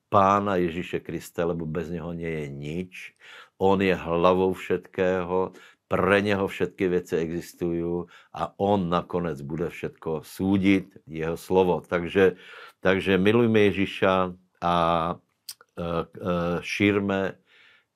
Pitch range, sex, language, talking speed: 90-100 Hz, male, Slovak, 105 wpm